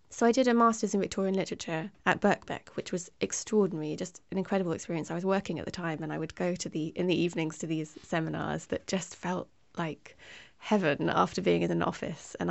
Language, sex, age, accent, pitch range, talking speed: English, female, 20-39, British, 165-205 Hz, 220 wpm